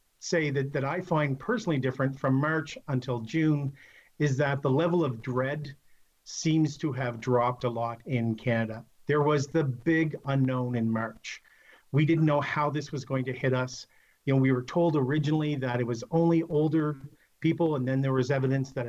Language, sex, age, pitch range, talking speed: English, male, 50-69, 130-155 Hz, 190 wpm